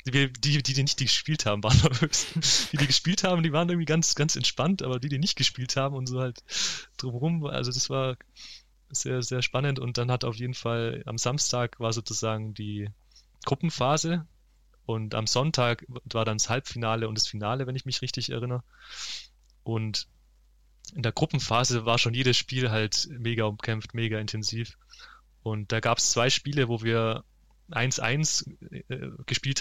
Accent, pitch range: German, 115-135 Hz